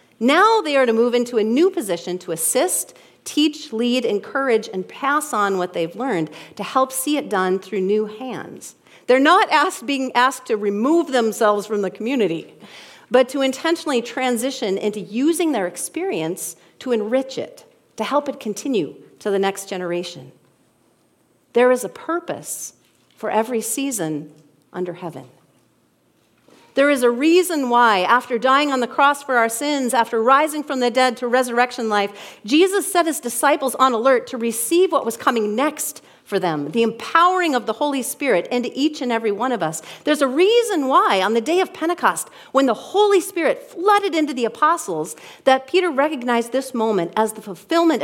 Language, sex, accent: English, female, American